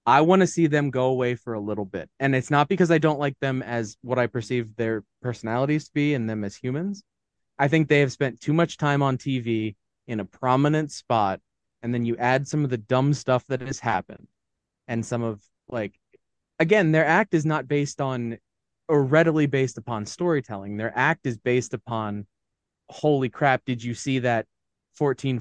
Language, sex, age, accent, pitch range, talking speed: English, male, 20-39, American, 115-150 Hz, 200 wpm